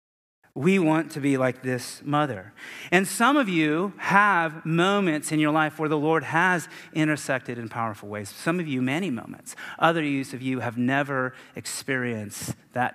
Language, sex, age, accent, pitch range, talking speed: English, male, 30-49, American, 130-160 Hz, 165 wpm